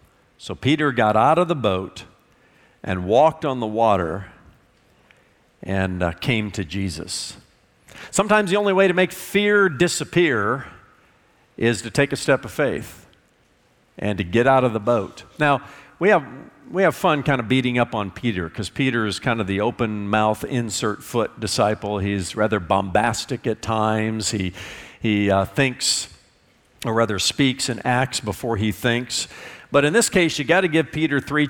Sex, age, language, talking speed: male, 50-69, English, 165 wpm